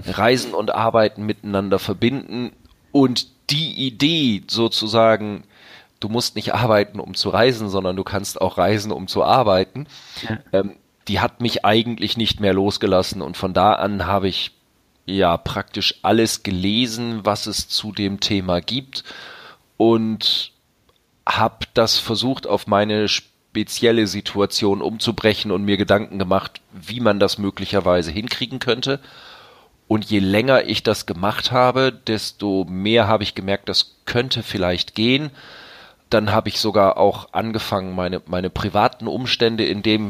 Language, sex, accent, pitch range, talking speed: German, male, German, 100-115 Hz, 140 wpm